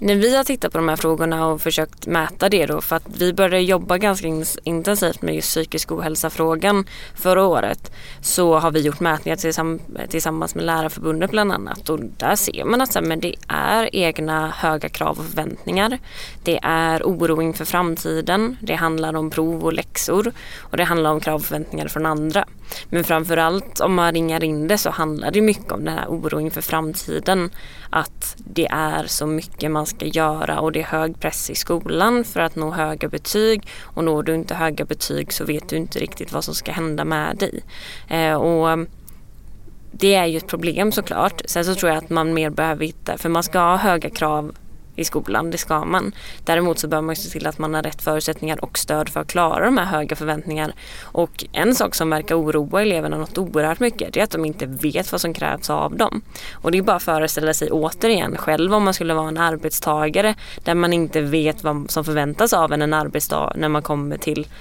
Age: 20-39